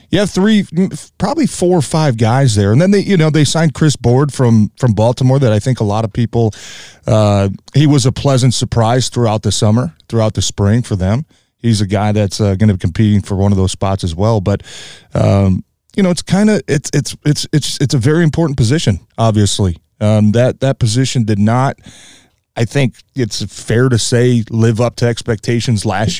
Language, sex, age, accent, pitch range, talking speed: English, male, 30-49, American, 105-125 Hz, 210 wpm